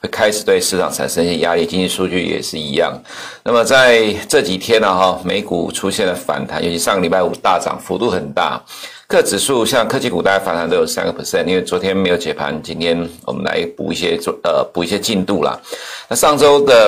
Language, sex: Chinese, male